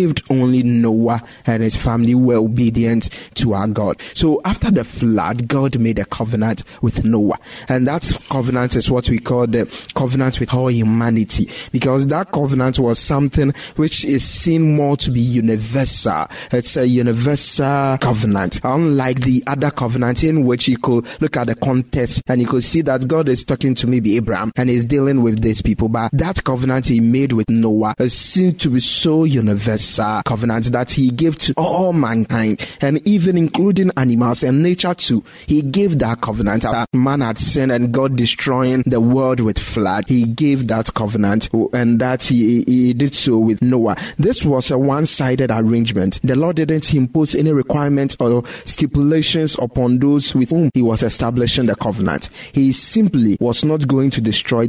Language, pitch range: English, 115-140 Hz